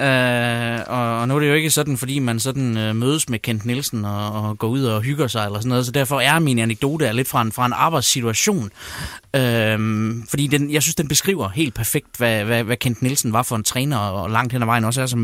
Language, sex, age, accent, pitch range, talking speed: Danish, male, 20-39, native, 110-140 Hz, 250 wpm